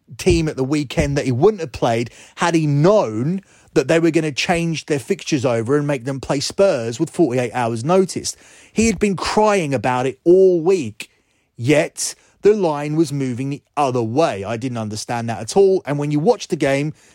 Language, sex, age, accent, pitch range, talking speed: English, male, 30-49, British, 125-170 Hz, 205 wpm